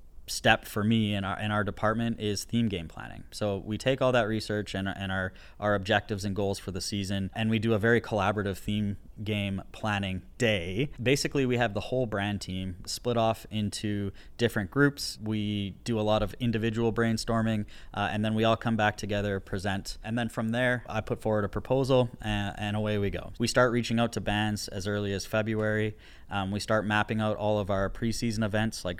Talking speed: 205 wpm